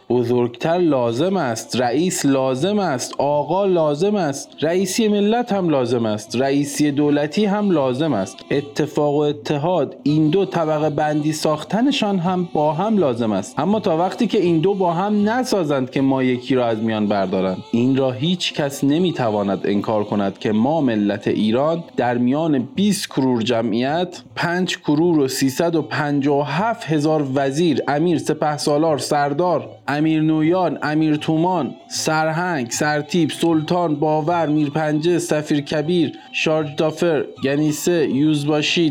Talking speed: 135 wpm